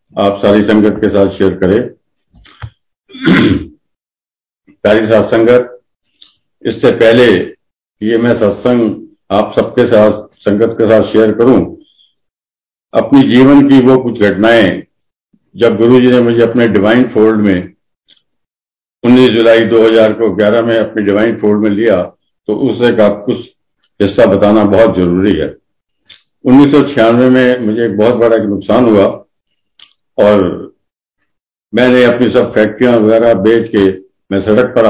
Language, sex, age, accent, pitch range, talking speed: Hindi, male, 50-69, native, 100-115 Hz, 135 wpm